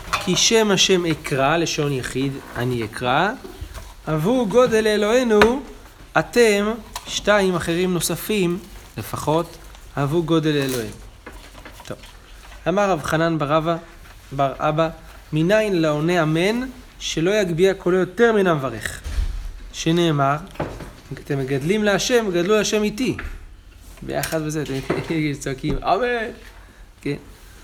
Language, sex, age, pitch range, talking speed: Hebrew, male, 30-49, 125-175 Hz, 105 wpm